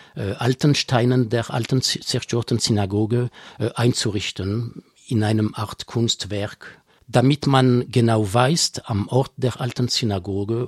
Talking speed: 110 wpm